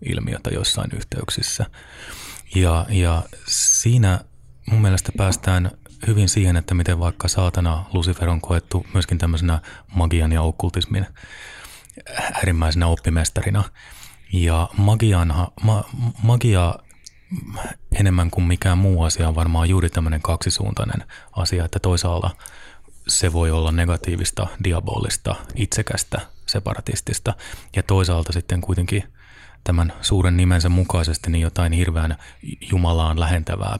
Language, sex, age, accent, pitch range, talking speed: Finnish, male, 20-39, native, 85-100 Hz, 110 wpm